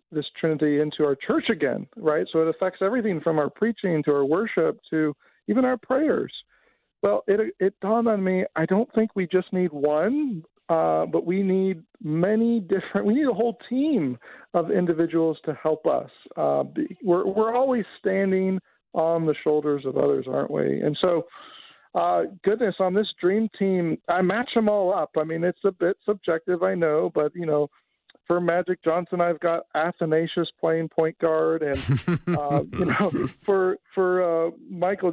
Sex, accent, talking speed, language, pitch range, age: male, American, 175 wpm, English, 160-205 Hz, 50-69